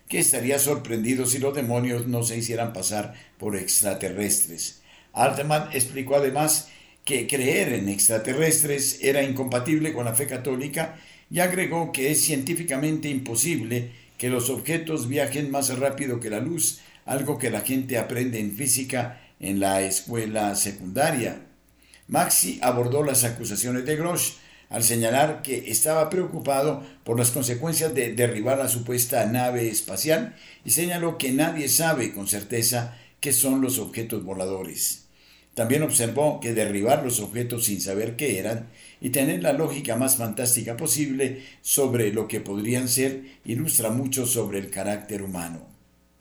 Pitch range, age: 110-140 Hz, 60-79